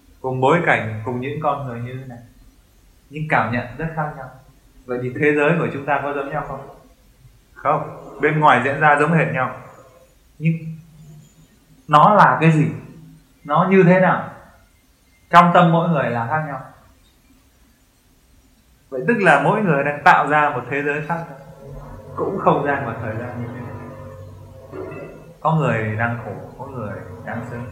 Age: 20-39